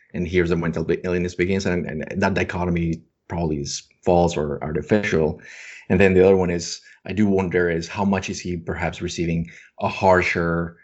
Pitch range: 80-90 Hz